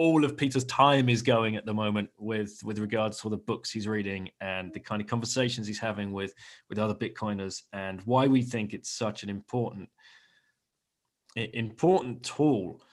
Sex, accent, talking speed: male, British, 175 wpm